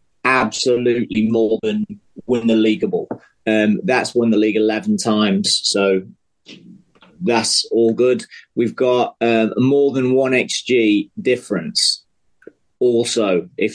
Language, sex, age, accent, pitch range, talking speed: English, male, 30-49, British, 105-135 Hz, 120 wpm